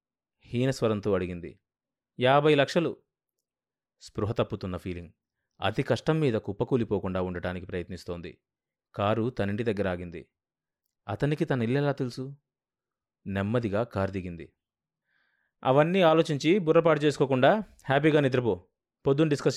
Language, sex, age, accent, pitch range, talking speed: Telugu, male, 30-49, native, 100-140 Hz, 90 wpm